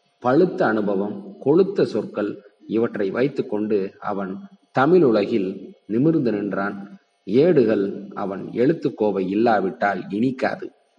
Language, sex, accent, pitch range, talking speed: Tamil, male, native, 100-115 Hz, 95 wpm